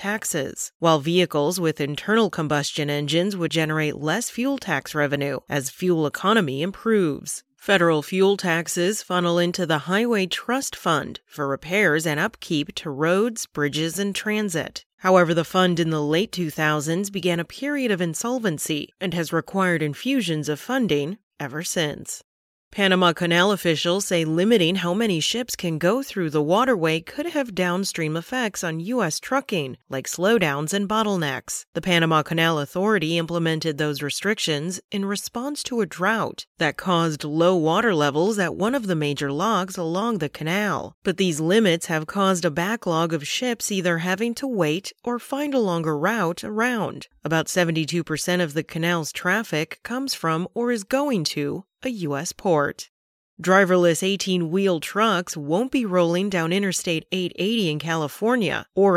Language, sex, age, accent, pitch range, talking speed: English, female, 30-49, American, 160-210 Hz, 155 wpm